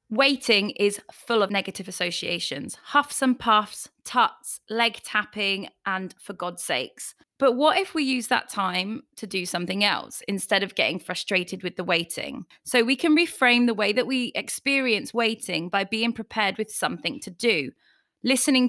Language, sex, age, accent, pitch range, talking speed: English, female, 20-39, British, 200-255 Hz, 165 wpm